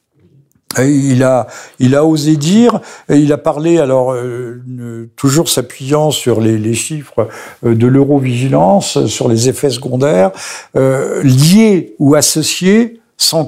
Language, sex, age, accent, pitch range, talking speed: French, male, 60-79, French, 125-170 Hz, 135 wpm